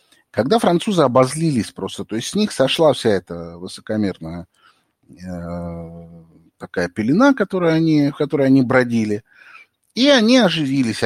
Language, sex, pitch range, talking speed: Russian, male, 95-155 Hz, 120 wpm